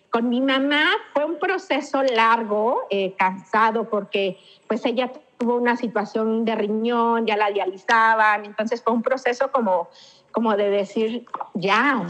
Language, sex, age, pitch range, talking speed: Spanish, female, 40-59, 205-255 Hz, 150 wpm